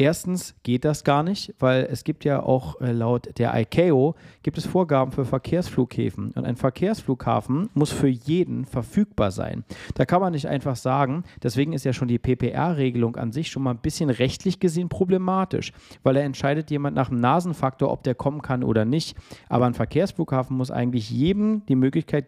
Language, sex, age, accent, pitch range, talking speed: German, male, 40-59, German, 120-150 Hz, 185 wpm